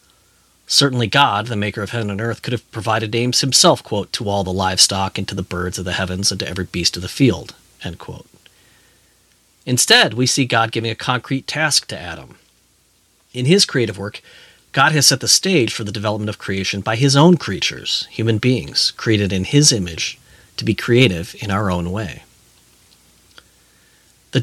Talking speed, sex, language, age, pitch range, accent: 185 wpm, male, English, 40-59, 95-125 Hz, American